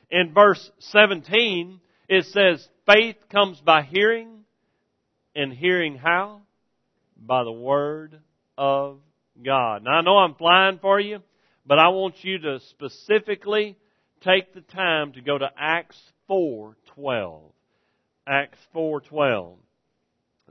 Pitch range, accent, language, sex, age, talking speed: 160-225 Hz, American, English, male, 50-69, 115 wpm